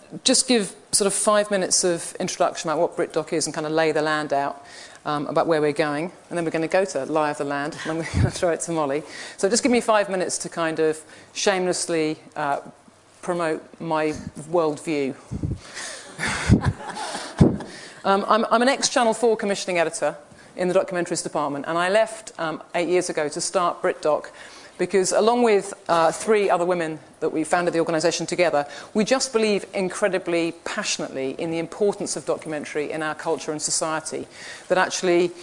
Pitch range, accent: 160-200 Hz, British